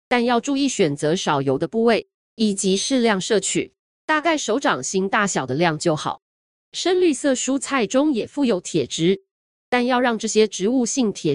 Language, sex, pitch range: Chinese, female, 180-270 Hz